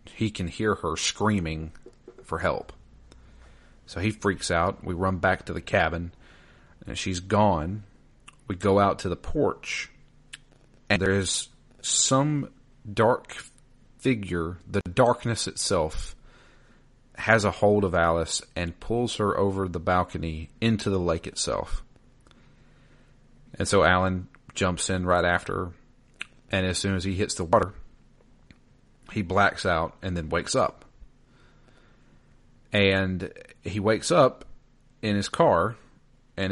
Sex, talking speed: male, 130 wpm